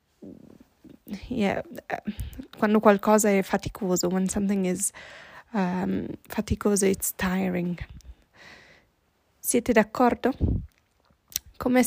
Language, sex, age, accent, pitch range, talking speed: Italian, female, 20-39, native, 185-215 Hz, 80 wpm